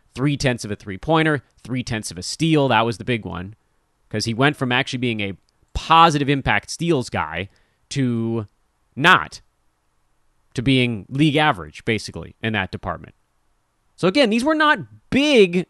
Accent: American